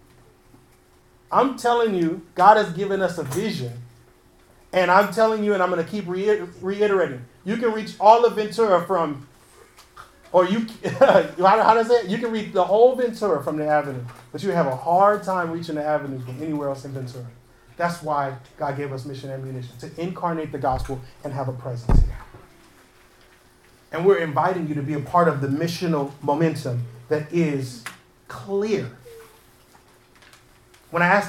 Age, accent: 30-49, American